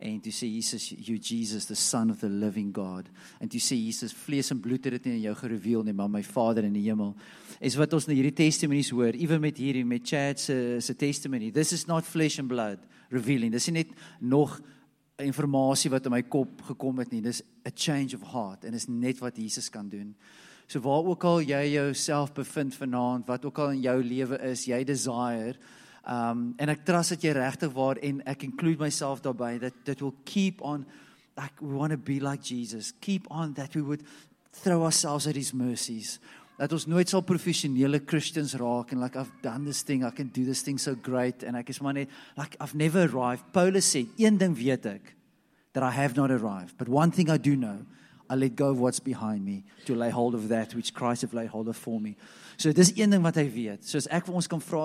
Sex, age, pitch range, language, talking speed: male, 40-59, 120-150 Hz, English, 230 wpm